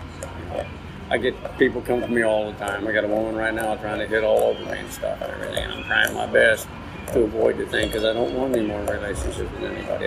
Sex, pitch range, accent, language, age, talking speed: male, 90-135 Hz, American, English, 50-69, 250 wpm